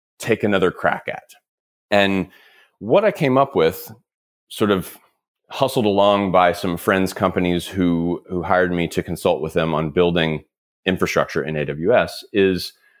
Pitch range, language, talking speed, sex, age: 85-110 Hz, English, 150 wpm, male, 30-49